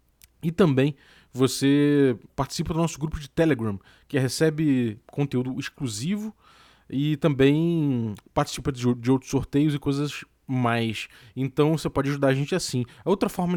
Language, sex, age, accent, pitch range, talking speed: Portuguese, male, 20-39, Brazilian, 120-150 Hz, 140 wpm